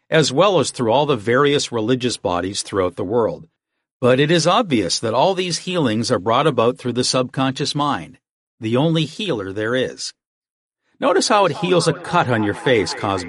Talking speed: 190 wpm